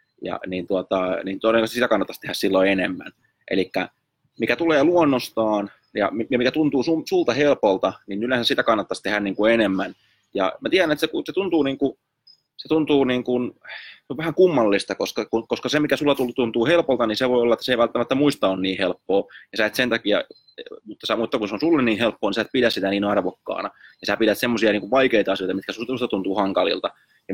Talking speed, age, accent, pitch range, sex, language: 215 wpm, 20-39, native, 100-130 Hz, male, Finnish